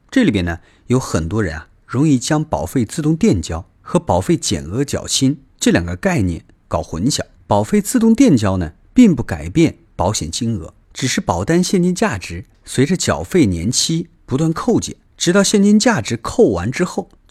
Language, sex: Chinese, male